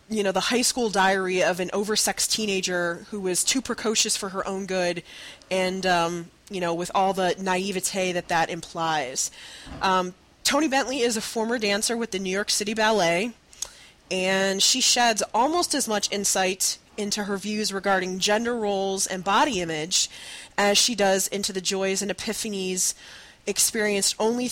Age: 20-39